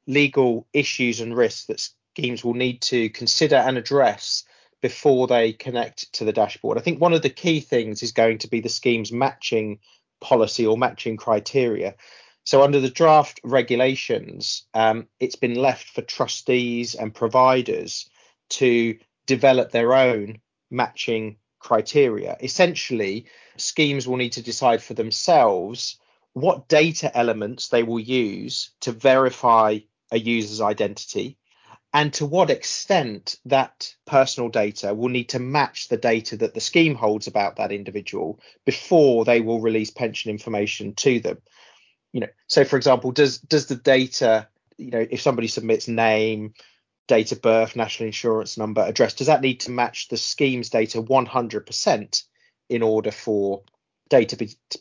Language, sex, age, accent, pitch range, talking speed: English, male, 30-49, British, 110-135 Hz, 150 wpm